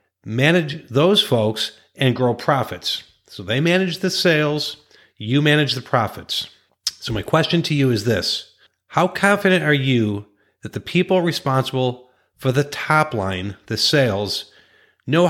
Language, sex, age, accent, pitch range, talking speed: English, male, 40-59, American, 110-150 Hz, 145 wpm